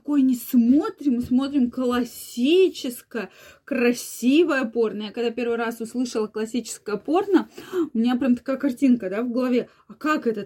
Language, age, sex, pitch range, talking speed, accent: Russian, 20-39, female, 230-295 Hz, 145 wpm, native